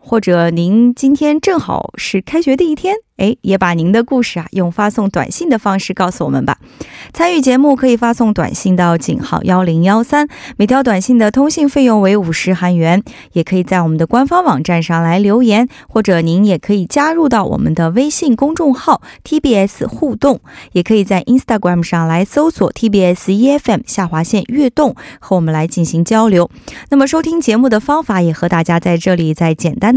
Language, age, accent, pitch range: Korean, 20-39, Chinese, 180-260 Hz